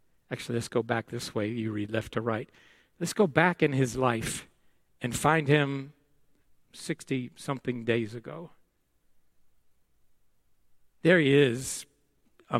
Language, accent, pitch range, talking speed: English, American, 125-160 Hz, 130 wpm